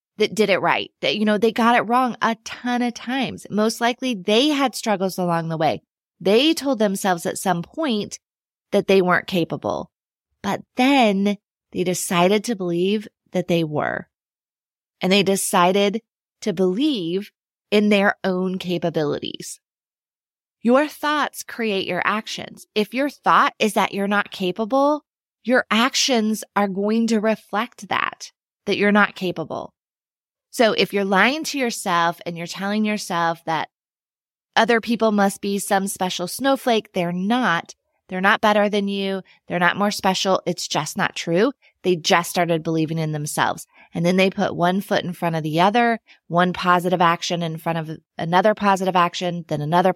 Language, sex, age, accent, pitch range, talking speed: English, female, 20-39, American, 180-230 Hz, 165 wpm